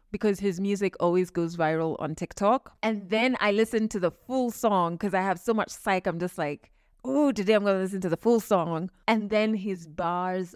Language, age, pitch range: English, 20-39, 180-245 Hz